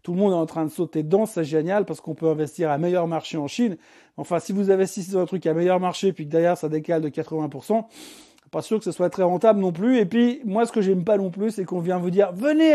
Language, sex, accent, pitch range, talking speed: French, male, French, 165-230 Hz, 290 wpm